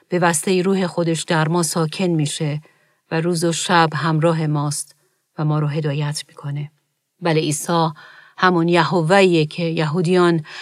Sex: female